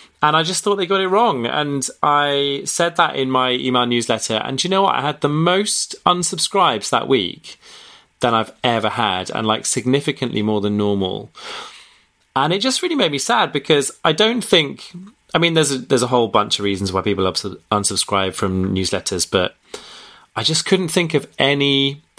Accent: British